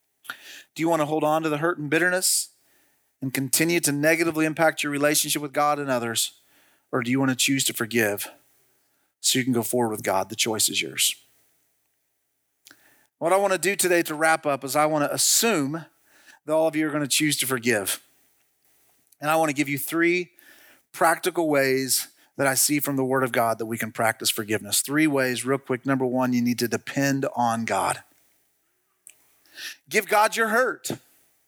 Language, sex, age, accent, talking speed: English, male, 40-59, American, 195 wpm